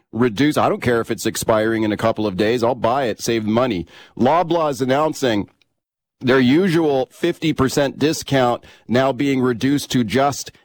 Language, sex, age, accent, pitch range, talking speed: English, male, 40-59, American, 120-145 Hz, 160 wpm